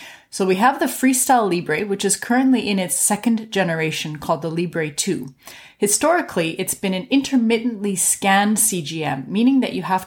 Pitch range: 175-230 Hz